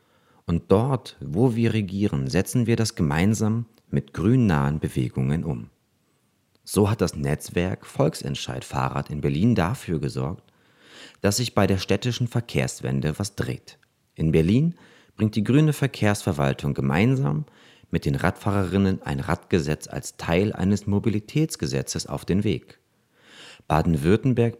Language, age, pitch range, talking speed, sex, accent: German, 40-59, 80-115 Hz, 125 wpm, male, German